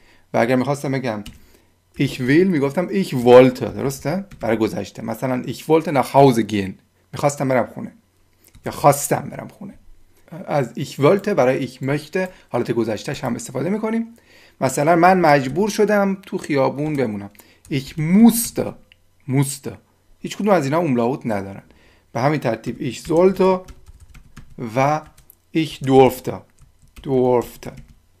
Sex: male